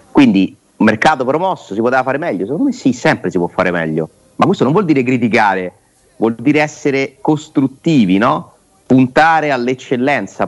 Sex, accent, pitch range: male, native, 100-130 Hz